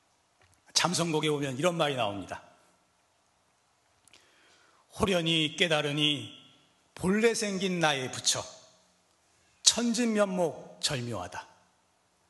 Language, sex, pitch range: Korean, male, 155-250 Hz